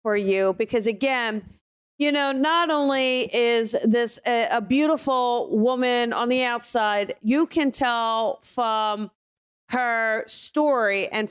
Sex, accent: female, American